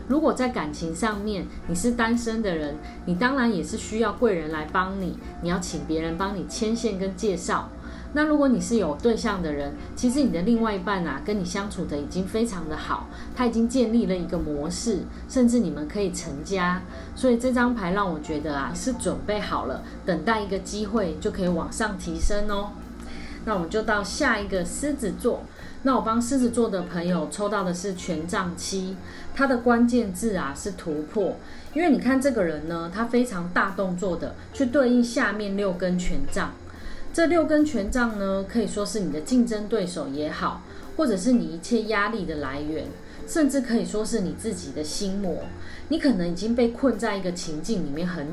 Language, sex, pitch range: Chinese, female, 175-235 Hz